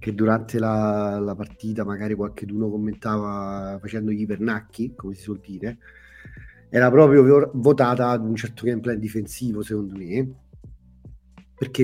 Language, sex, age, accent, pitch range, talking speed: Italian, male, 30-49, native, 110-130 Hz, 130 wpm